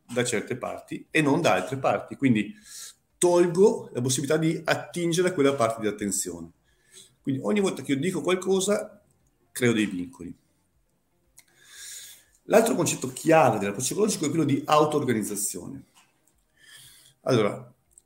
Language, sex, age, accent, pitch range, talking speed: Italian, male, 50-69, native, 105-150 Hz, 130 wpm